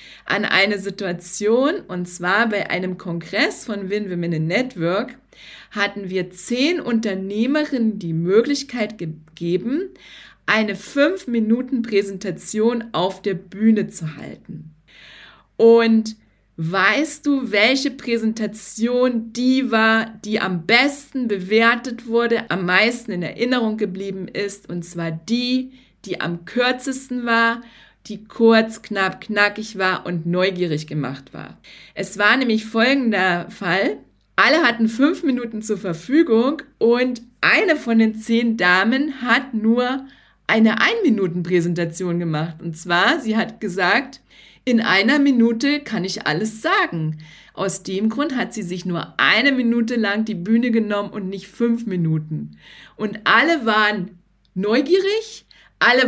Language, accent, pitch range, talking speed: German, German, 185-240 Hz, 125 wpm